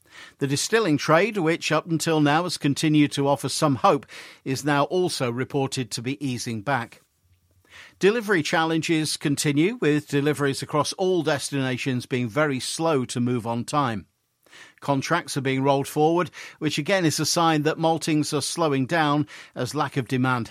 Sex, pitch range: male, 130-160 Hz